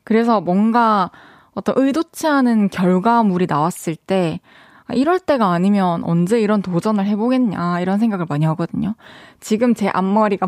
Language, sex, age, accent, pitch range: Korean, female, 20-39, native, 180-235 Hz